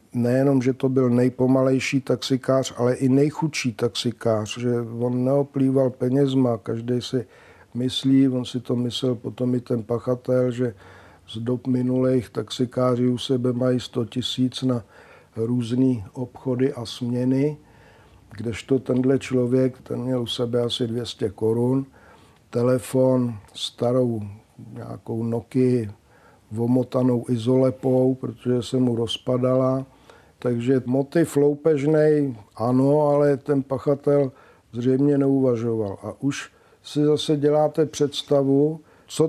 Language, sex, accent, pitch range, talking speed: Czech, male, native, 120-135 Hz, 115 wpm